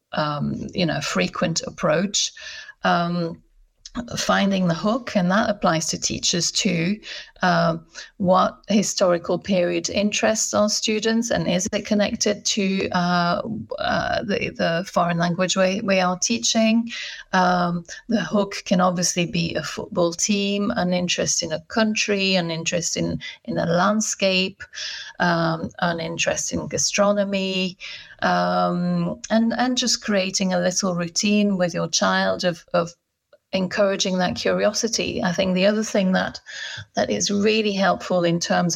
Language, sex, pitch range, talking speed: English, female, 175-205 Hz, 140 wpm